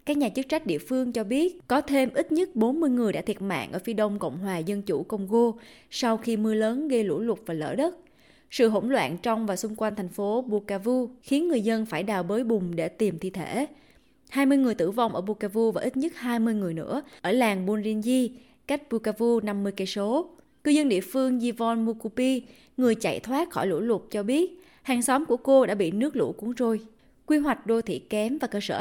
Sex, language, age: female, Vietnamese, 20-39